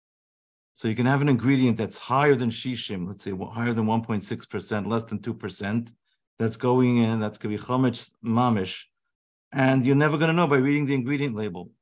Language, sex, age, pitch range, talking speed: English, male, 50-69, 110-135 Hz, 200 wpm